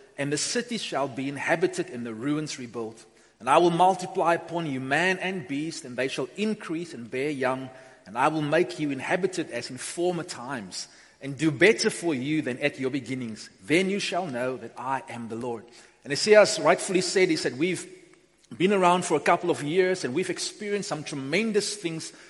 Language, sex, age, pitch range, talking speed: English, male, 30-49, 140-185 Hz, 200 wpm